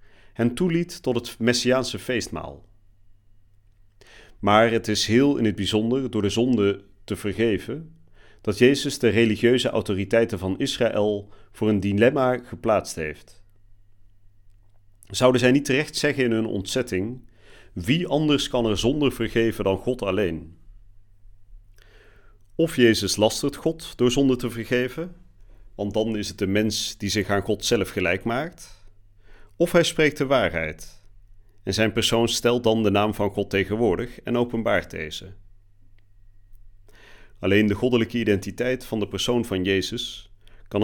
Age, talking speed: 40-59, 140 wpm